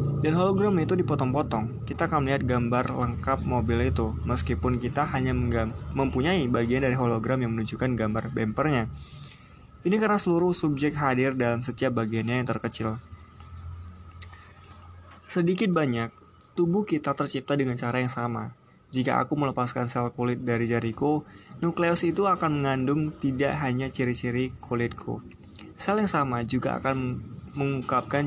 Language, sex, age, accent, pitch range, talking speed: Indonesian, male, 20-39, native, 115-145 Hz, 130 wpm